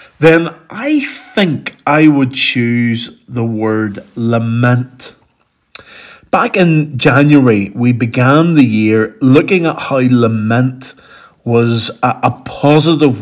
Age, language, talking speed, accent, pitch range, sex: 50-69, English, 110 wpm, British, 115-150 Hz, male